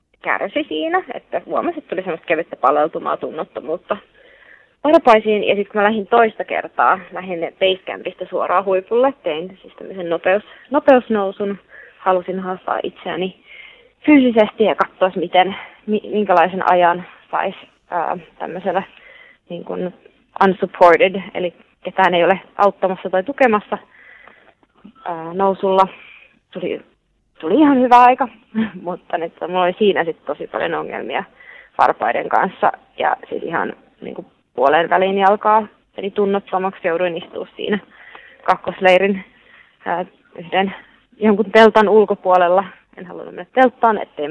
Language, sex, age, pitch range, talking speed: Finnish, female, 20-39, 185-225 Hz, 120 wpm